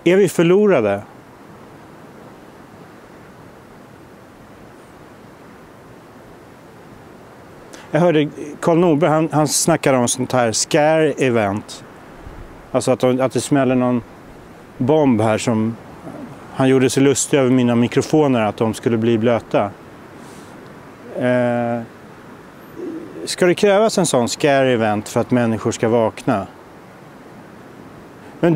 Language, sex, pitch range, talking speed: Swedish, male, 120-155 Hz, 105 wpm